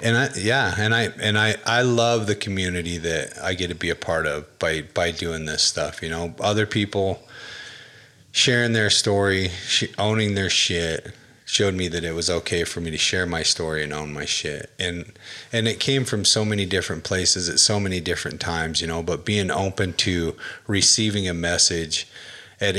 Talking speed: 195 wpm